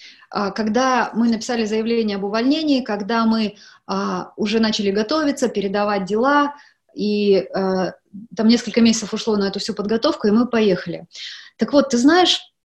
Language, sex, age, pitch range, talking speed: Russian, female, 20-39, 210-270 Hz, 135 wpm